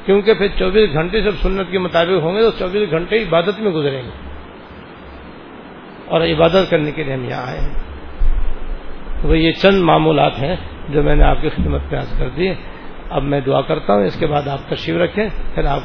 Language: Urdu